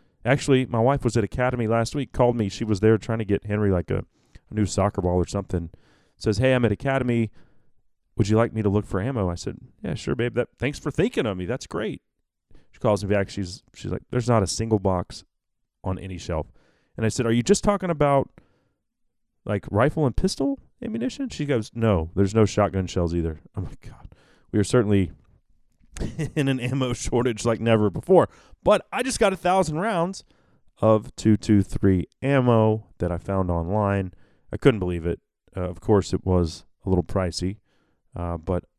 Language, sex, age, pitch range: English, male, 30-49, 95-135 Hz